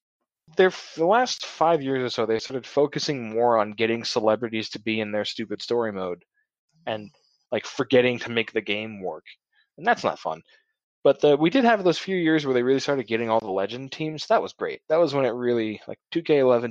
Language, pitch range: English, 110-150 Hz